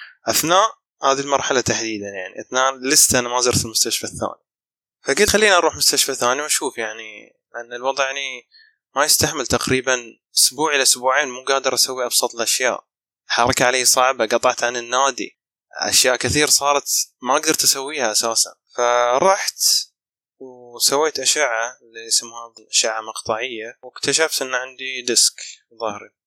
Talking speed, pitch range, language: 130 wpm, 115-140 Hz, Arabic